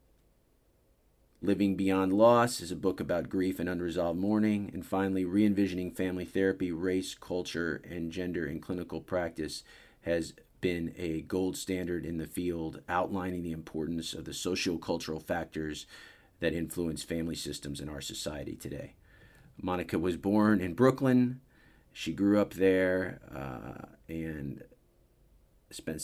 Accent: American